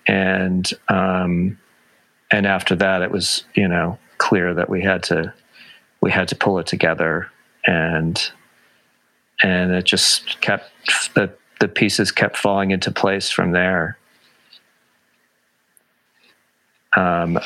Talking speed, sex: 120 wpm, male